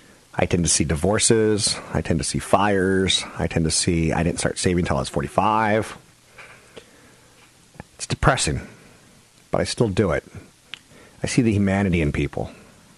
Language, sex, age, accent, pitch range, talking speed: English, male, 40-59, American, 85-105 Hz, 160 wpm